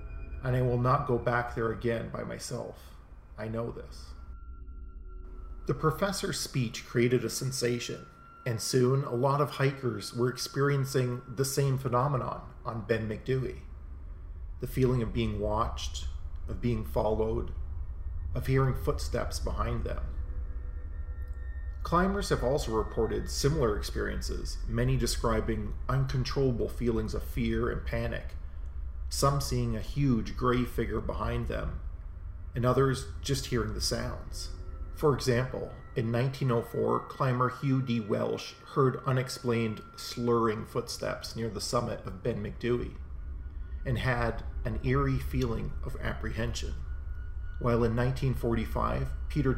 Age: 40-59